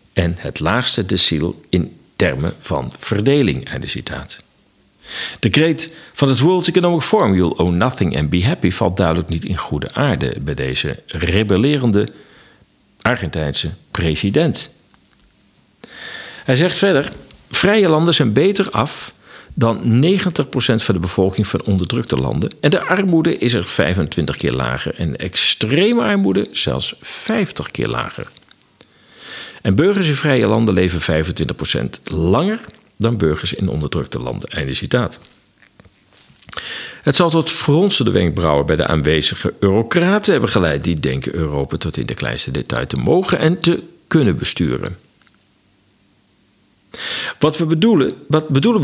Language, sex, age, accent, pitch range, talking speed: Dutch, male, 50-69, Dutch, 85-145 Hz, 135 wpm